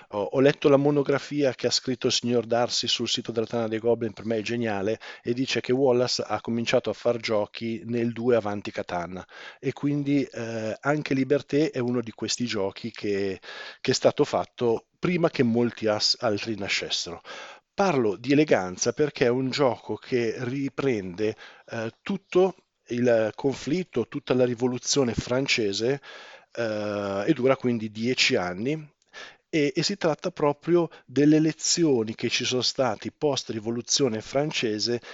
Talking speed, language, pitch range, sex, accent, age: 155 wpm, Italian, 110-135 Hz, male, native, 40-59